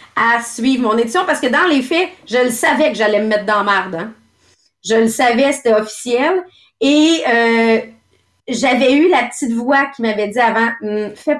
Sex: female